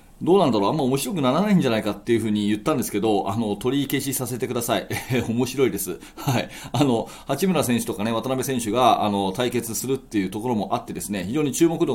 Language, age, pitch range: Japanese, 30-49, 105-135 Hz